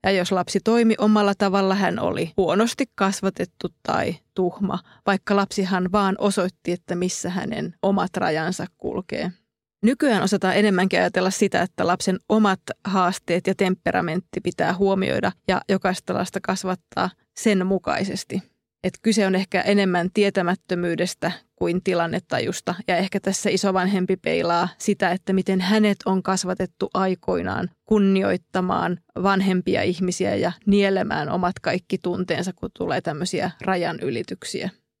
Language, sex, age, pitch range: Finnish, female, 30-49, 180-200 Hz